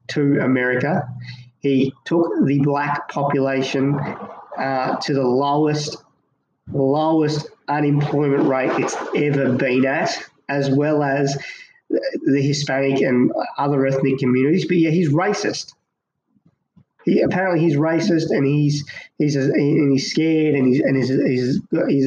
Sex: male